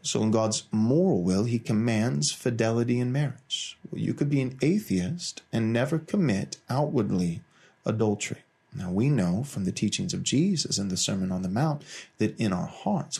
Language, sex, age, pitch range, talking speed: English, male, 30-49, 110-150 Hz, 175 wpm